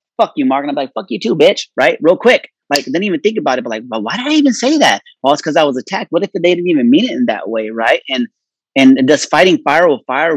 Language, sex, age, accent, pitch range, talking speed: English, male, 30-49, American, 125-175 Hz, 305 wpm